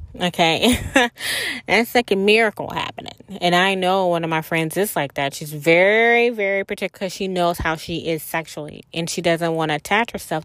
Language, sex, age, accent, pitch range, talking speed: English, female, 20-39, American, 155-205 Hz, 195 wpm